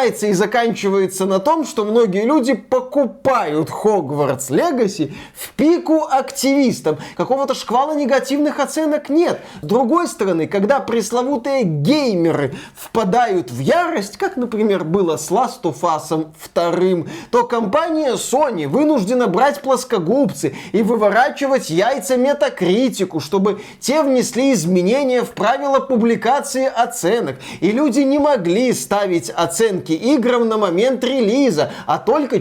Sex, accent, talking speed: male, native, 115 wpm